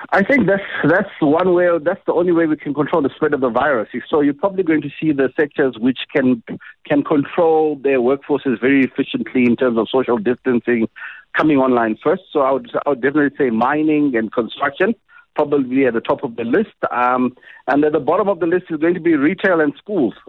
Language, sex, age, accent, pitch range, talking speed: English, male, 60-79, South African, 130-175 Hz, 230 wpm